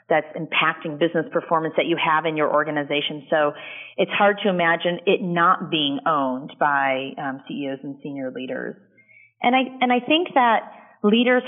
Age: 30-49